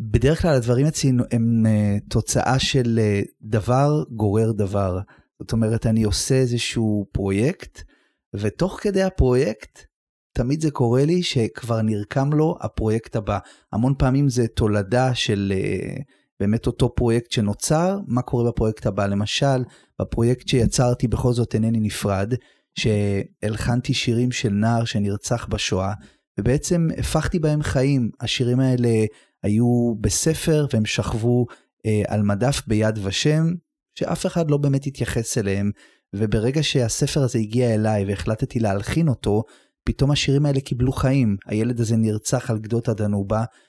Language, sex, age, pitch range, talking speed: Hebrew, male, 30-49, 110-140 Hz, 135 wpm